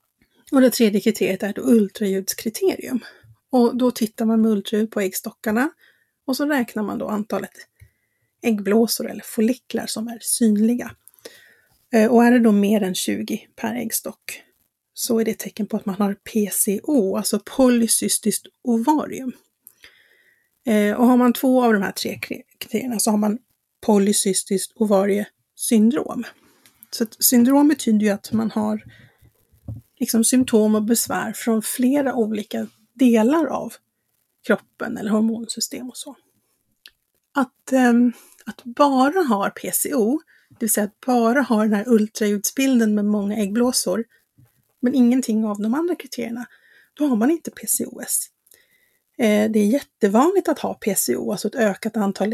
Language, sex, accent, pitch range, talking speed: Swedish, female, native, 210-250 Hz, 140 wpm